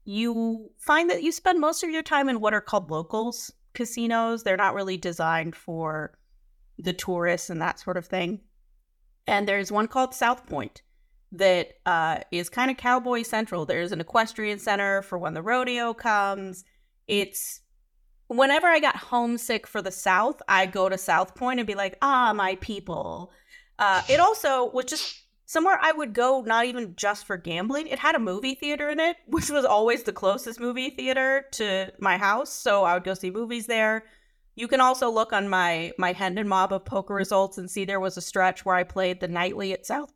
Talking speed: 195 wpm